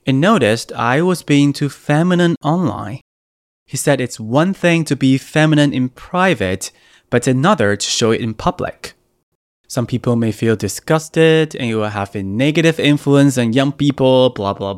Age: 20-39